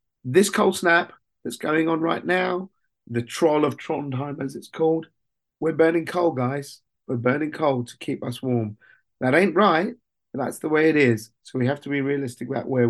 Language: English